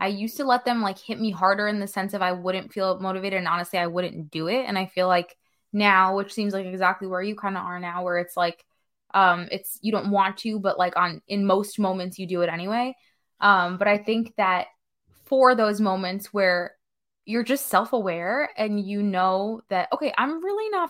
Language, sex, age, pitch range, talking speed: English, female, 20-39, 185-235 Hz, 225 wpm